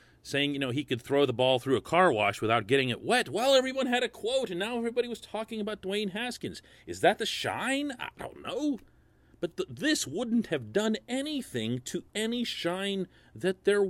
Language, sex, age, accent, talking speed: English, male, 40-59, American, 205 wpm